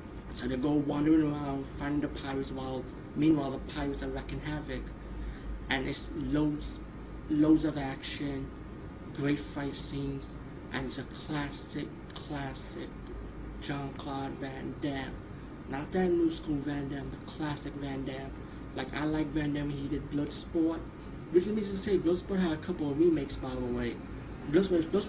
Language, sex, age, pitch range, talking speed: English, male, 20-39, 135-160 Hz, 155 wpm